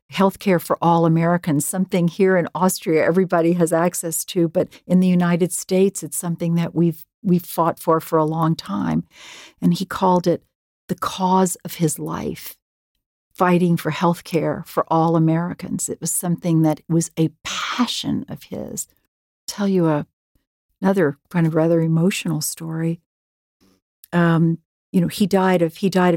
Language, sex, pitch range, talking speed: German, female, 160-180 Hz, 165 wpm